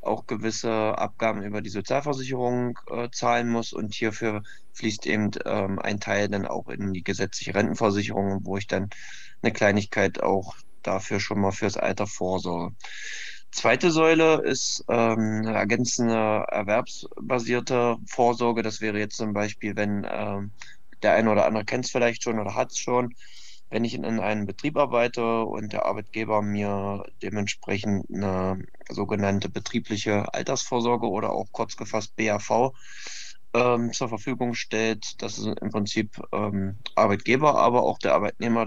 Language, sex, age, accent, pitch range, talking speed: German, male, 20-39, German, 100-115 Hz, 145 wpm